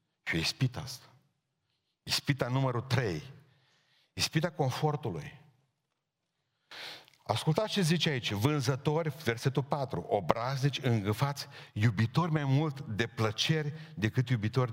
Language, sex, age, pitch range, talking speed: Romanian, male, 50-69, 95-145 Hz, 100 wpm